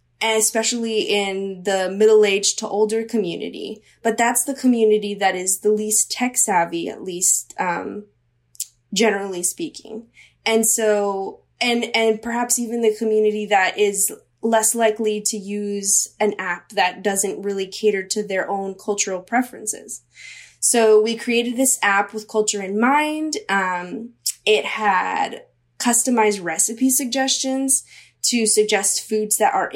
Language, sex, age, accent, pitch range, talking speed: English, female, 10-29, American, 195-235 Hz, 135 wpm